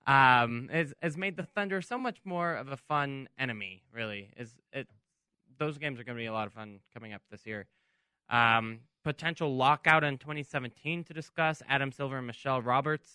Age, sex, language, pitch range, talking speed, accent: 10-29, male, English, 120-155 Hz, 190 wpm, American